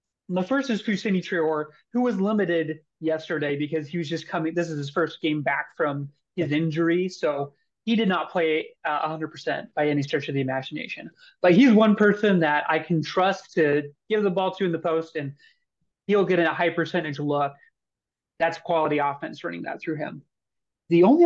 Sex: male